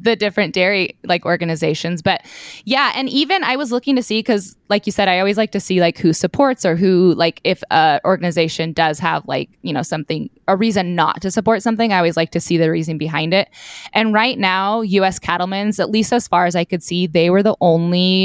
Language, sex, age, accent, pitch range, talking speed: English, female, 20-39, American, 165-210 Hz, 230 wpm